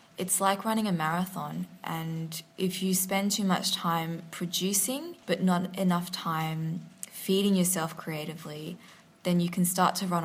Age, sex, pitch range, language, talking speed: 20-39, female, 170-190 Hz, English, 150 wpm